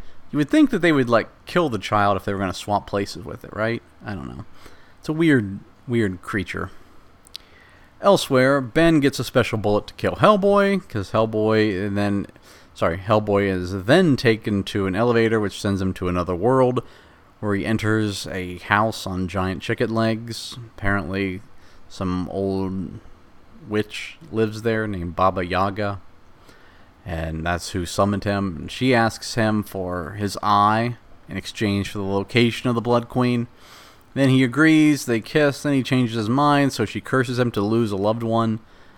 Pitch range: 95-115 Hz